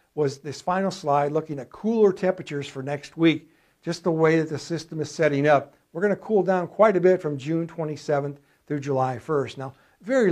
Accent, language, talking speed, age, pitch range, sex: American, English, 205 wpm, 60-79, 140-170 Hz, male